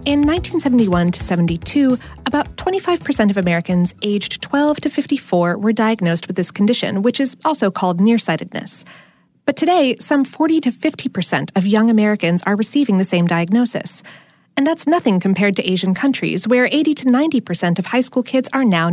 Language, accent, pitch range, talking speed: English, American, 185-270 Hz, 170 wpm